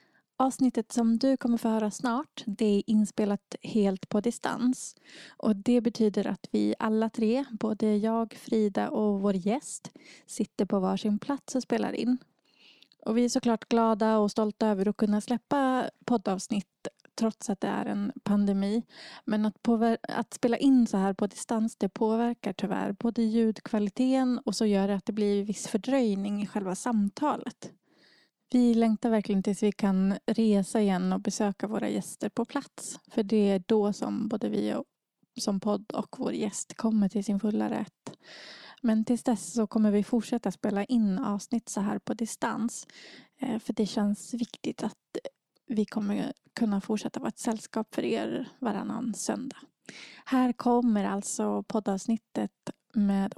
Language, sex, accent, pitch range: Swedish, female, native, 205-240 Hz